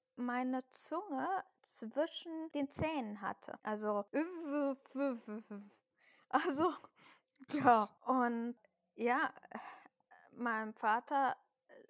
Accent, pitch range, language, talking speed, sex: German, 220-265 Hz, German, 65 wpm, female